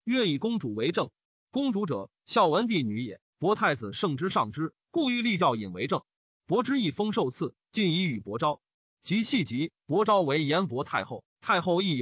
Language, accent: Chinese, native